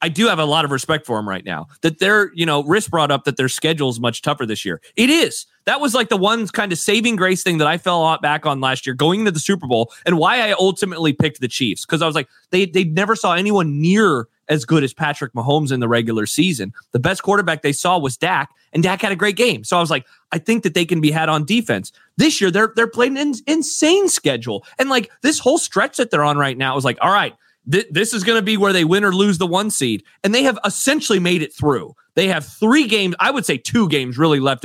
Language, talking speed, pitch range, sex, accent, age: English, 275 wpm, 135-200 Hz, male, American, 30-49